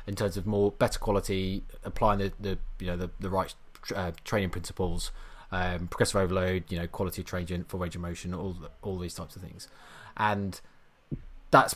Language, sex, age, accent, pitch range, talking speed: English, male, 20-39, British, 90-105 Hz, 200 wpm